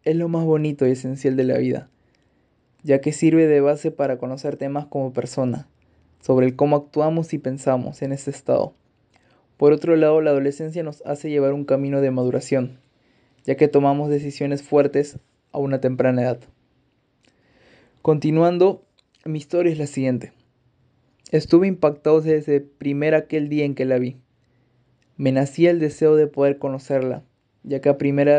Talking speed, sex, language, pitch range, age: 165 wpm, male, Spanish, 130-150 Hz, 20-39